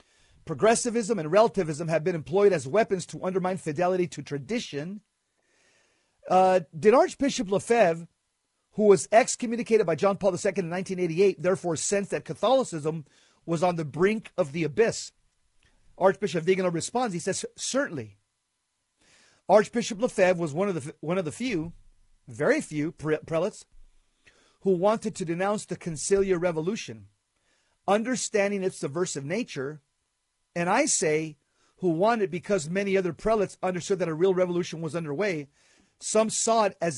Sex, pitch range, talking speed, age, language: male, 160-205 Hz, 140 wpm, 40-59, English